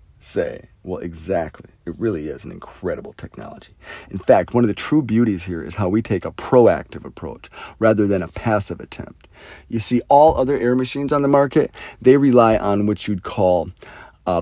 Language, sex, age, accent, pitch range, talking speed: English, male, 40-59, American, 95-115 Hz, 185 wpm